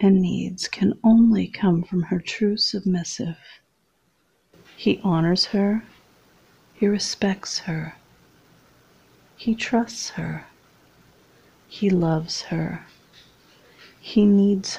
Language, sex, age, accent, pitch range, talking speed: English, female, 40-59, American, 165-210 Hz, 95 wpm